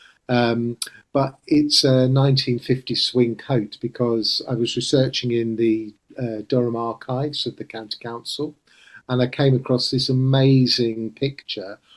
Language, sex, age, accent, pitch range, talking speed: English, male, 40-59, British, 120-140 Hz, 140 wpm